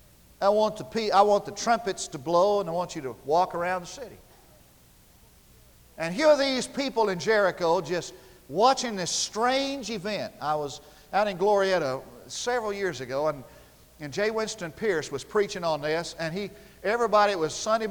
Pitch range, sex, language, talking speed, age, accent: 150-205 Hz, male, English, 180 wpm, 50-69, American